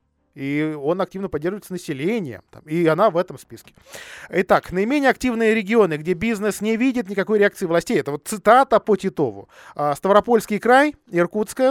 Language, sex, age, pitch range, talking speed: Russian, male, 20-39, 155-220 Hz, 150 wpm